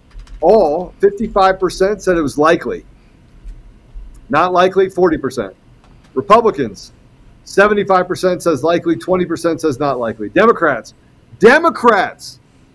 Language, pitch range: English, 170-220 Hz